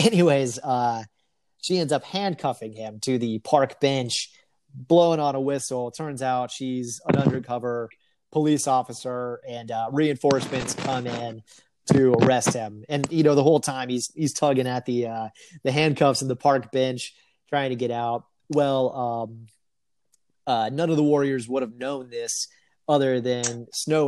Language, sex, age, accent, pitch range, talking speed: English, male, 30-49, American, 115-140 Hz, 165 wpm